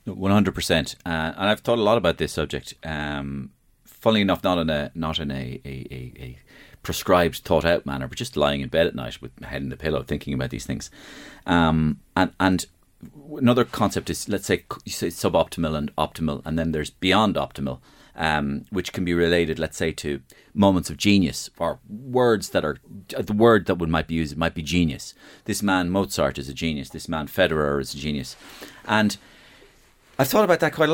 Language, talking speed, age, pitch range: English, 205 wpm, 30-49, 80-115 Hz